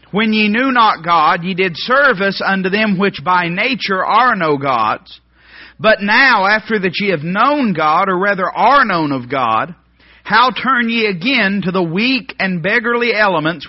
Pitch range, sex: 160-220 Hz, male